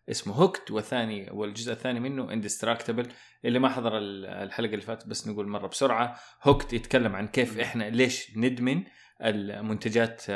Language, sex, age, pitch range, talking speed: Arabic, male, 20-39, 110-130 Hz, 140 wpm